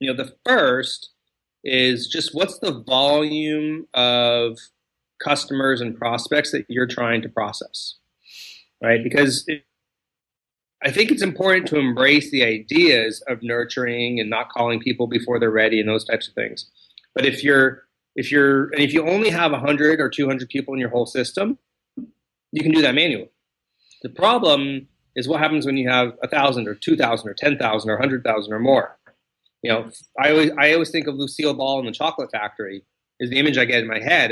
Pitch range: 120-145 Hz